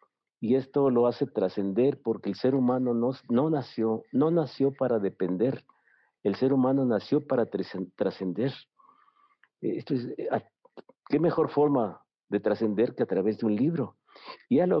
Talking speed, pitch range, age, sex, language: 150 wpm, 115-150 Hz, 50-69, male, Spanish